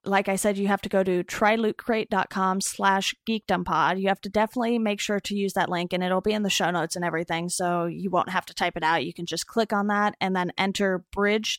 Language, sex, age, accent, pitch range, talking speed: English, female, 20-39, American, 180-205 Hz, 250 wpm